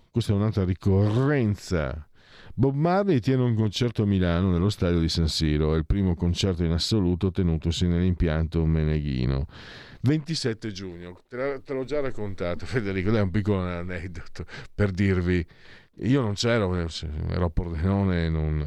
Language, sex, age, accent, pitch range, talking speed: Italian, male, 50-69, native, 85-110 Hz, 145 wpm